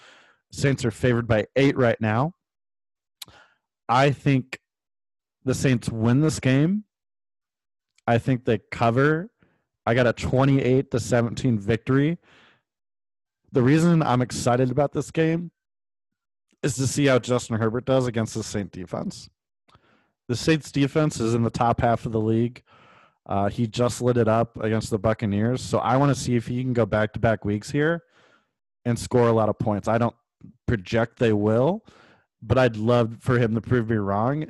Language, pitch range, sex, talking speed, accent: English, 110-130 Hz, male, 160 wpm, American